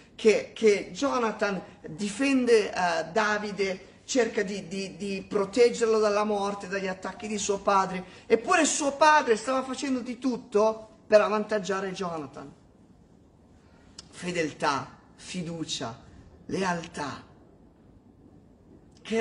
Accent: native